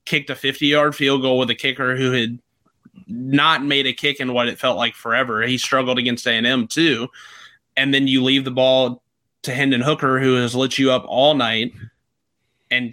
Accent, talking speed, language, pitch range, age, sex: American, 195 wpm, English, 120-135 Hz, 20-39, male